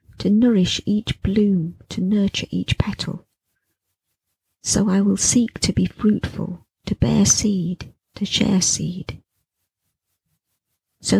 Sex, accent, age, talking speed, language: female, British, 40-59, 120 wpm, English